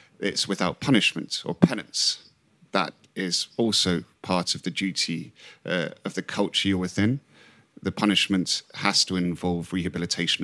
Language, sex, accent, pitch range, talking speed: English, male, British, 85-105 Hz, 140 wpm